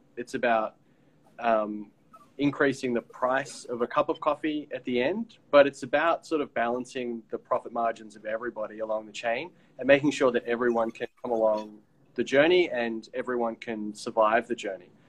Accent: Australian